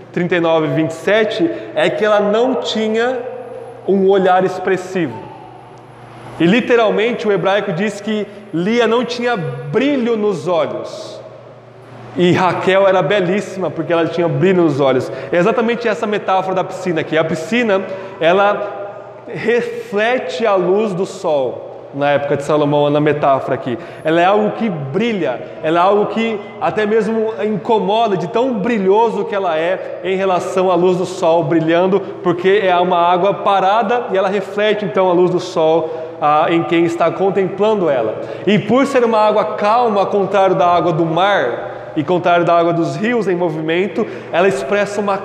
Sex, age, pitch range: male, 20-39, 170-210 Hz